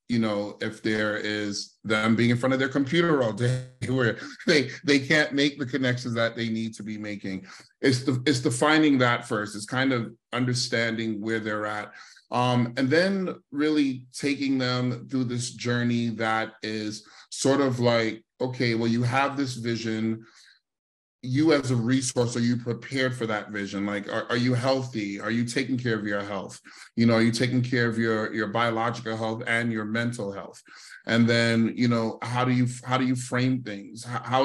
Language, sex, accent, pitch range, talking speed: English, male, American, 105-125 Hz, 195 wpm